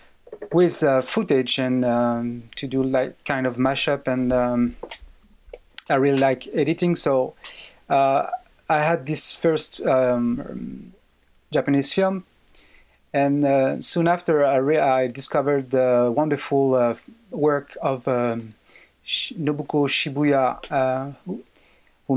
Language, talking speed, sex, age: English, 130 wpm, male, 30-49